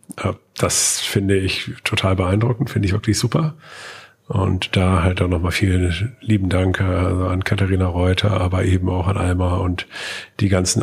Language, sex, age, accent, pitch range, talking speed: German, male, 50-69, German, 95-110 Hz, 155 wpm